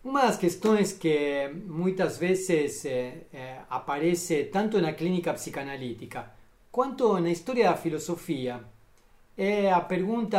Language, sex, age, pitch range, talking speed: Portuguese, male, 40-59, 160-215 Hz, 135 wpm